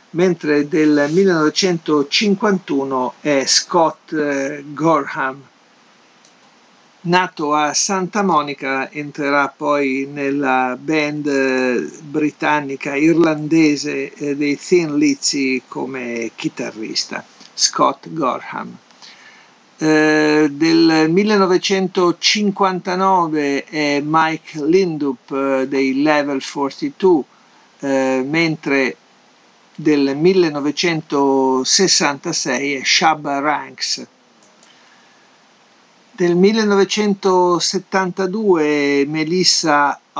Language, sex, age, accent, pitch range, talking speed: Italian, male, 50-69, native, 135-175 Hz, 65 wpm